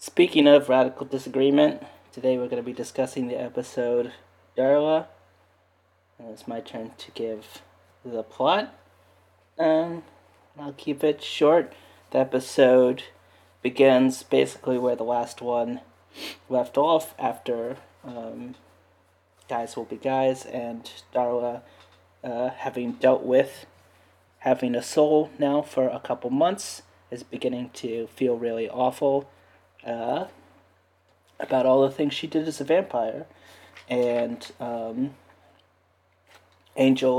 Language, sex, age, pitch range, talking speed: English, male, 30-49, 105-135 Hz, 120 wpm